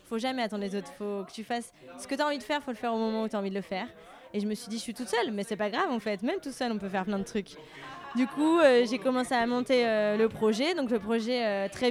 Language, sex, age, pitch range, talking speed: French, female, 20-39, 205-250 Hz, 340 wpm